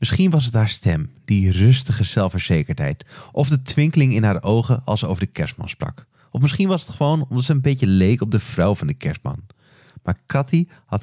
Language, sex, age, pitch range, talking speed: Dutch, male, 30-49, 105-140 Hz, 210 wpm